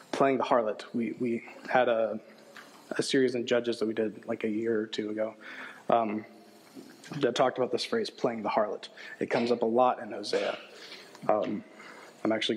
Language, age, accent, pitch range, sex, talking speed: English, 20-39, American, 110-125 Hz, male, 185 wpm